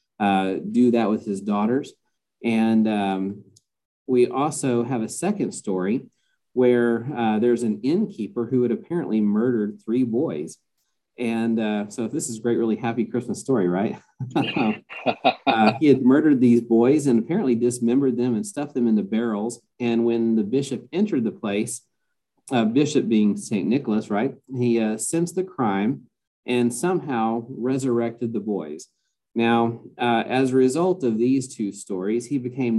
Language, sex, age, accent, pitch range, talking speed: English, male, 50-69, American, 105-125 Hz, 160 wpm